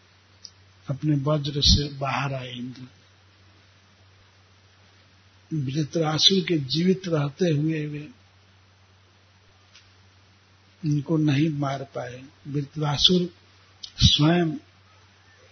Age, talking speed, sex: 60-79, 70 wpm, male